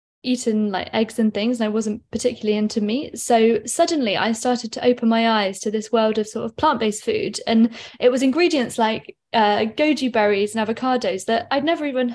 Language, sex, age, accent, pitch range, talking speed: English, female, 10-29, British, 220-250 Hz, 200 wpm